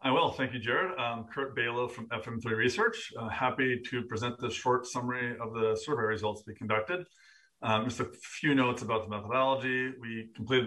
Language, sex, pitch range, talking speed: English, male, 110-125 Hz, 190 wpm